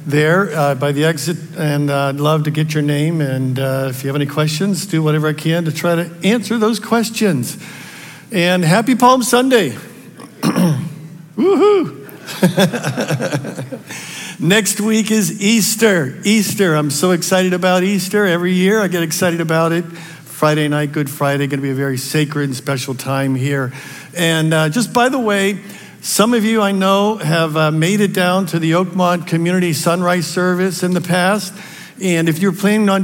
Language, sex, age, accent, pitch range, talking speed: English, male, 60-79, American, 140-190 Hz, 175 wpm